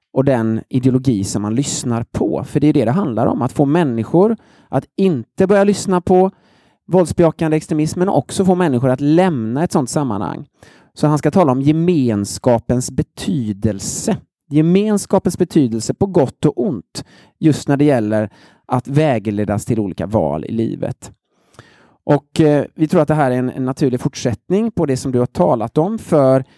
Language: Swedish